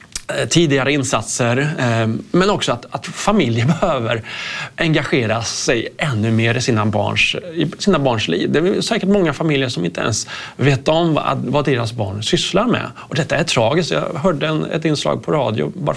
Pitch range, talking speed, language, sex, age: 115-160 Hz, 175 wpm, Swedish, male, 30-49